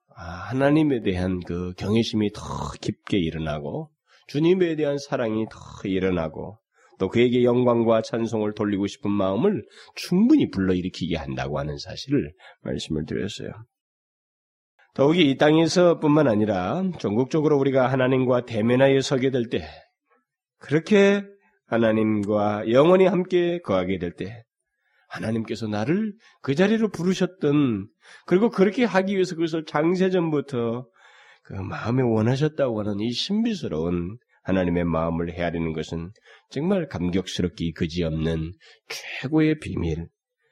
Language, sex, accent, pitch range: Korean, male, native, 95-145 Hz